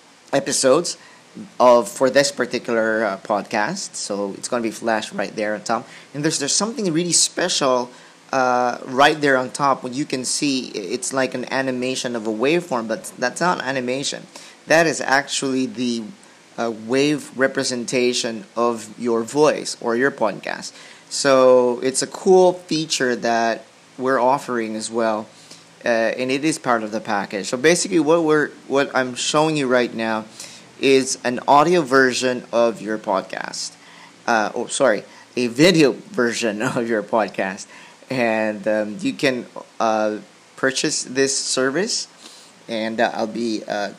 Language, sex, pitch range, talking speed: English, male, 115-140 Hz, 155 wpm